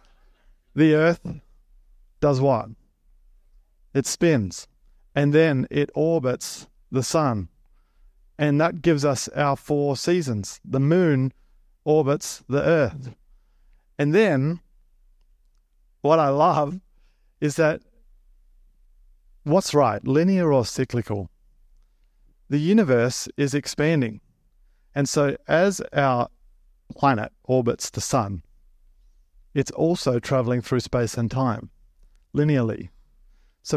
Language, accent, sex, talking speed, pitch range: English, Australian, male, 100 wpm, 95-145 Hz